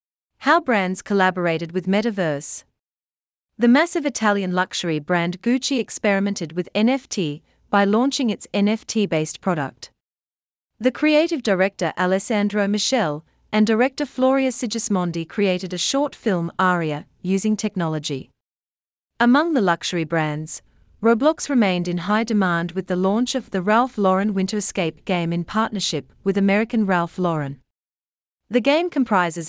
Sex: female